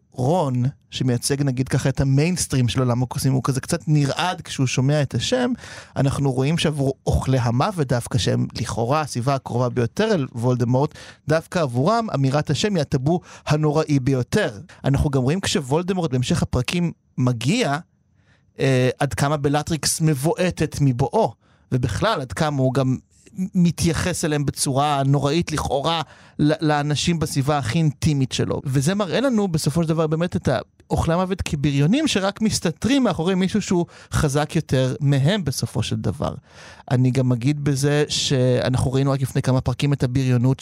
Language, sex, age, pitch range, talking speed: Hebrew, male, 30-49, 130-160 Hz, 150 wpm